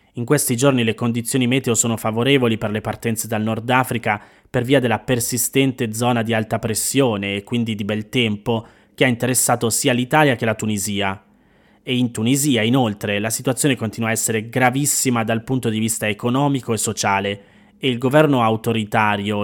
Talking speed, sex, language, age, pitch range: 175 wpm, male, Italian, 20-39, 110-130 Hz